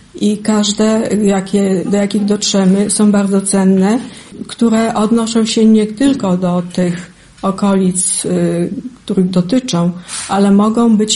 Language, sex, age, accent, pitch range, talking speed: Polish, female, 50-69, native, 185-220 Hz, 115 wpm